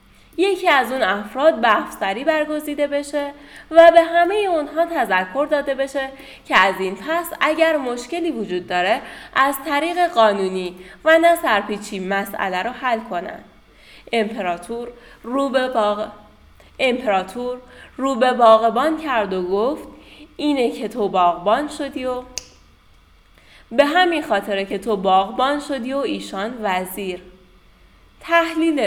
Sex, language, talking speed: female, Persian, 125 wpm